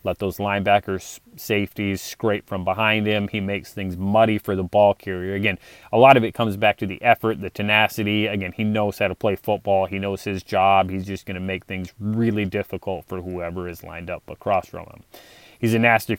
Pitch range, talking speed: 95-105 Hz, 210 wpm